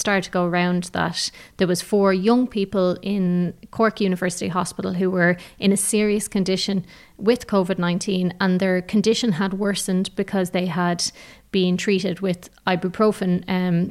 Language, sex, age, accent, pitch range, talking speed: English, female, 30-49, Irish, 185-215 Hz, 150 wpm